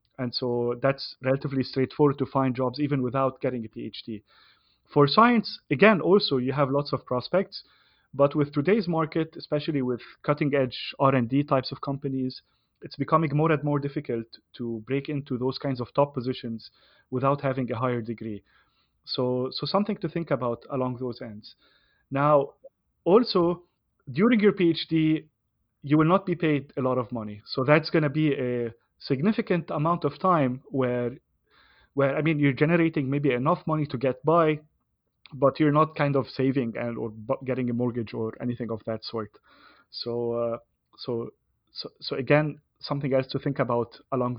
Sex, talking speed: male, 170 wpm